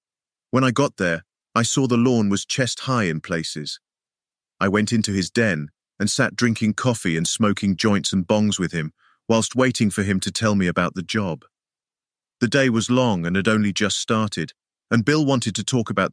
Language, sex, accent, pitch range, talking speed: English, male, British, 95-115 Hz, 200 wpm